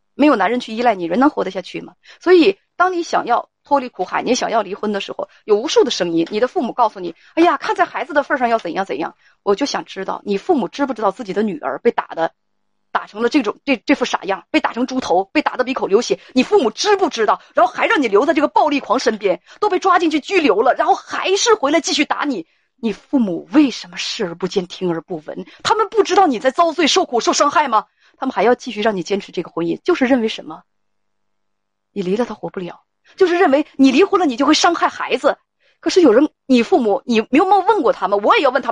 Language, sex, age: Chinese, female, 30-49